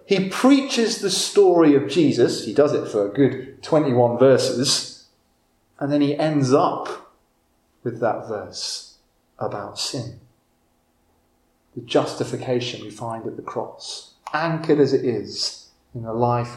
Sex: male